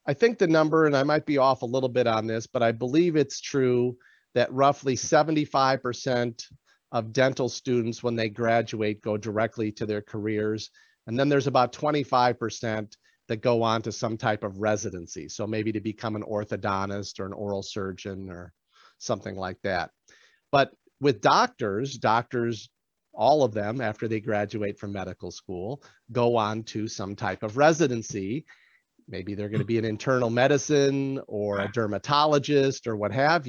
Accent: American